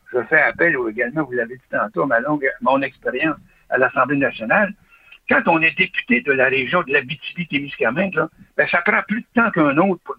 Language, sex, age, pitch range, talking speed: French, male, 60-79, 145-230 Hz, 205 wpm